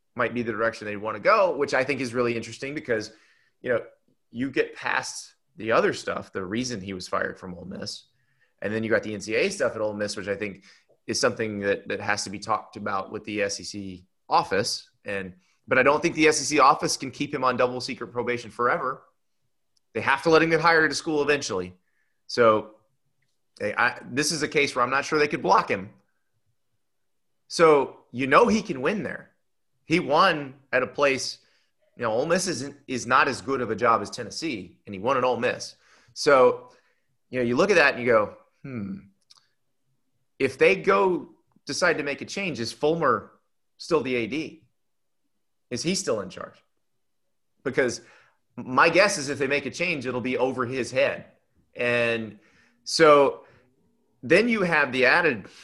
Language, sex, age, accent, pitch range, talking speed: English, male, 30-49, American, 110-150 Hz, 195 wpm